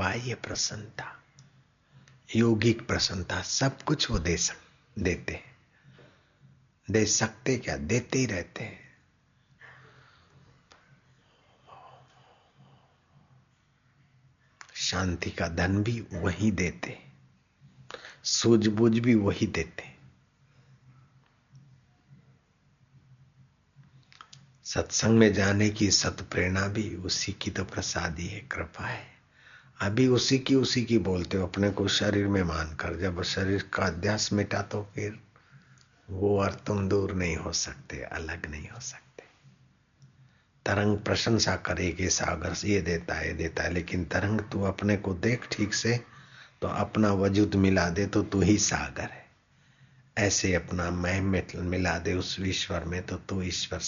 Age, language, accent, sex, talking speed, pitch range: 60-79, Hindi, native, male, 120 wpm, 90-130 Hz